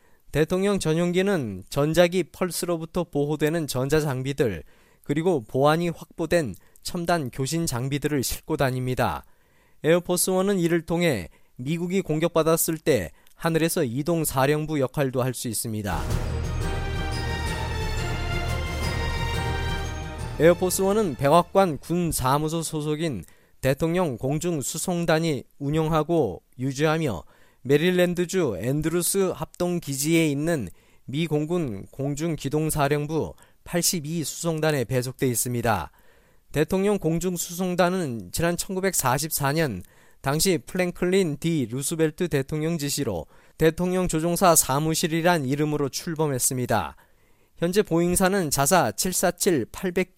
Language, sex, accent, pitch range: Korean, male, native, 130-175 Hz